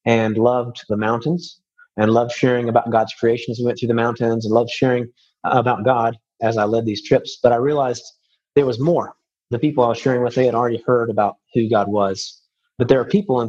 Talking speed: 225 wpm